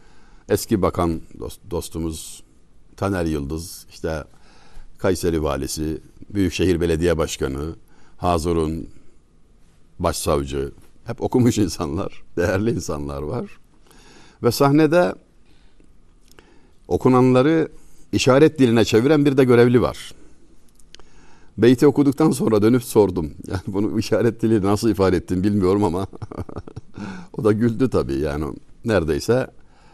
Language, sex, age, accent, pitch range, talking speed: Turkish, male, 60-79, native, 85-120 Hz, 100 wpm